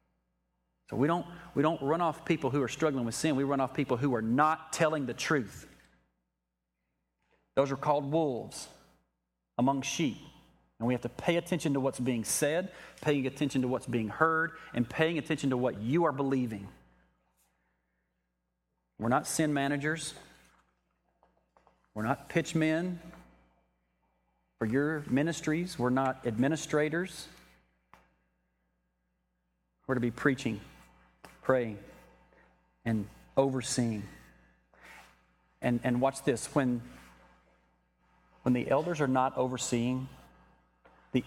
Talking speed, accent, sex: 125 wpm, American, male